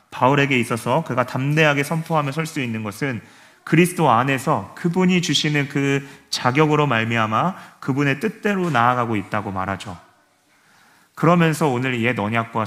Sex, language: male, Korean